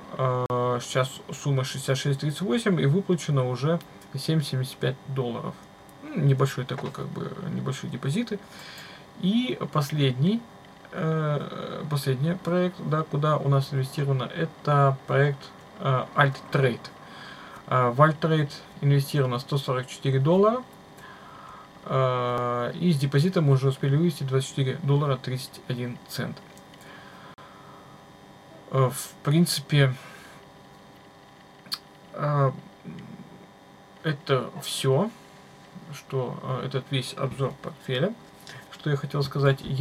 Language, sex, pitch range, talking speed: Russian, male, 130-165 Hz, 85 wpm